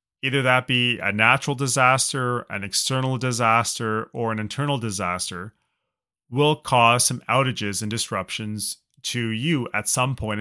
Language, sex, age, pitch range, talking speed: English, male, 30-49, 115-155 Hz, 140 wpm